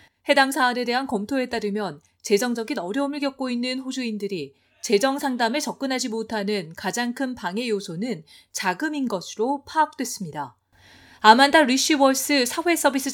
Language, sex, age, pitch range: Korean, female, 40-59, 195-255 Hz